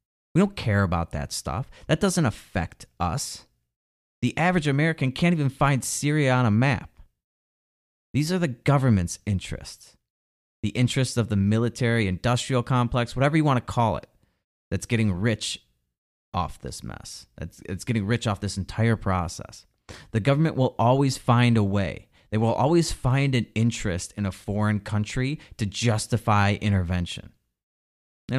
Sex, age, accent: male, 30-49, American